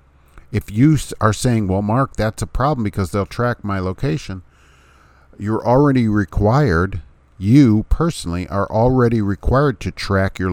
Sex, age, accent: male, 50-69, American